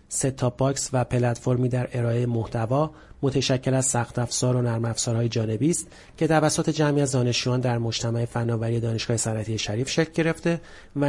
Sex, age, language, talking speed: male, 40-59, Persian, 160 wpm